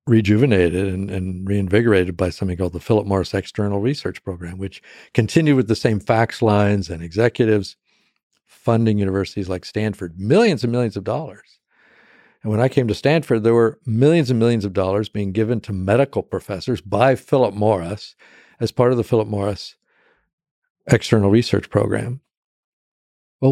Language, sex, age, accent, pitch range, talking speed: English, male, 50-69, American, 100-125 Hz, 160 wpm